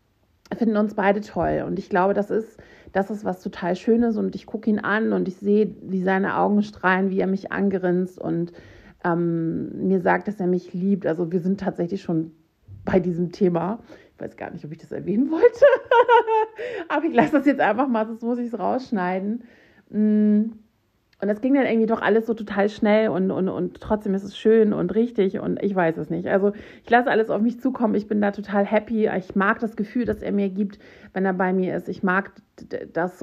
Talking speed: 215 wpm